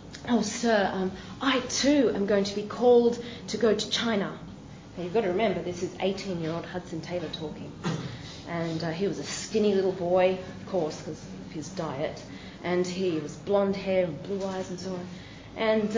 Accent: Australian